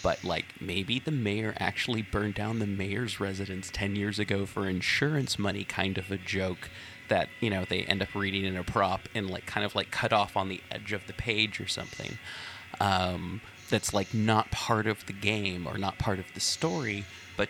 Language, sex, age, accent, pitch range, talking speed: English, male, 30-49, American, 95-115 Hz, 210 wpm